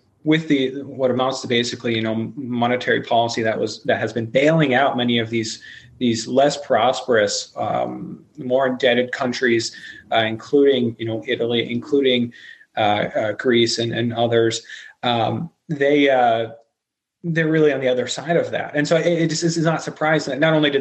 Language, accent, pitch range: English, American, 115-150 Hz